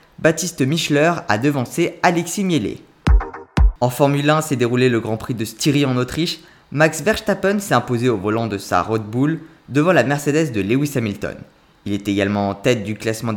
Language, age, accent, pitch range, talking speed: French, 20-39, French, 115-155 Hz, 185 wpm